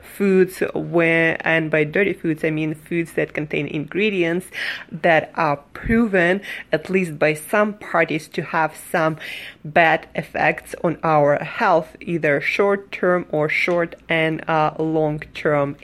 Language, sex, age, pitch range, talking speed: English, female, 20-39, 160-195 Hz, 140 wpm